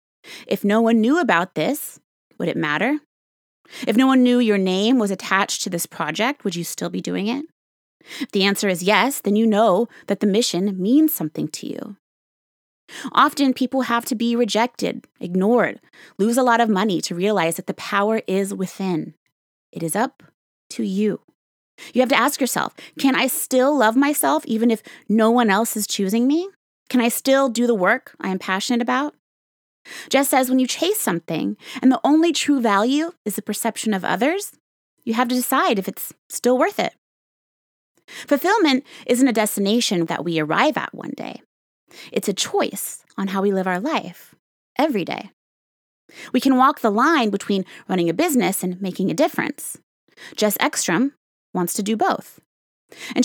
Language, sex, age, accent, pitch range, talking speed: English, female, 20-39, American, 200-270 Hz, 180 wpm